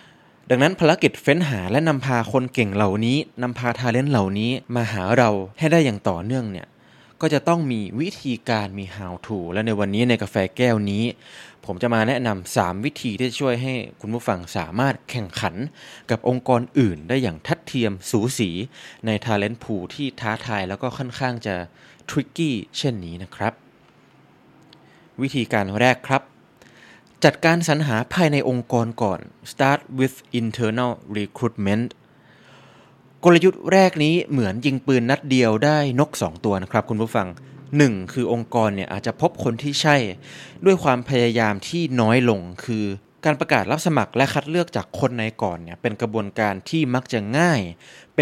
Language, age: Thai, 20-39